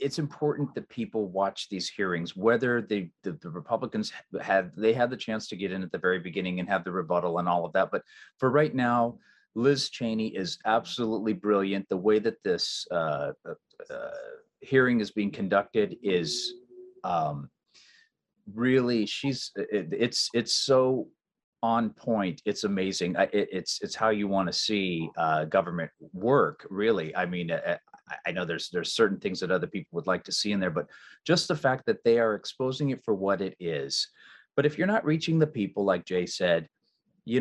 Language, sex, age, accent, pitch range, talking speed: English, male, 40-59, American, 95-140 Hz, 190 wpm